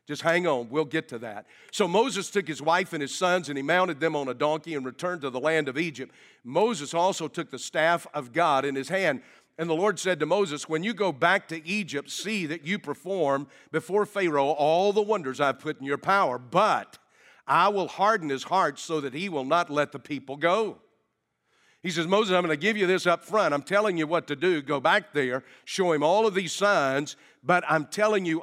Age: 50-69